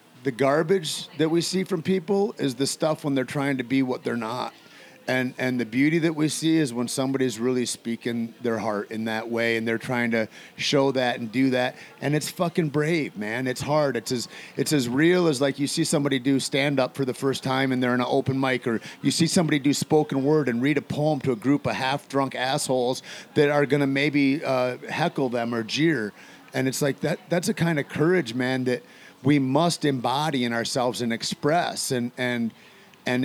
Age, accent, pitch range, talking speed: 30-49, American, 125-155 Hz, 220 wpm